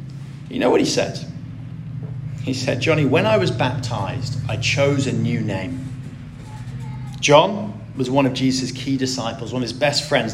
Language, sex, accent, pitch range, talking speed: English, male, British, 125-155 Hz, 170 wpm